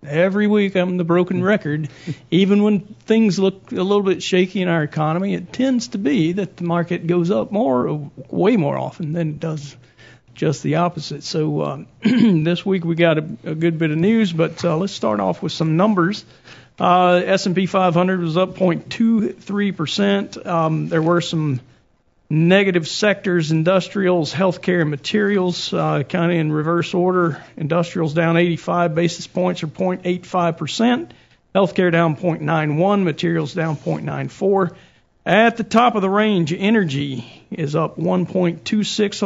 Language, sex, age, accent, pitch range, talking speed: English, male, 50-69, American, 160-190 Hz, 155 wpm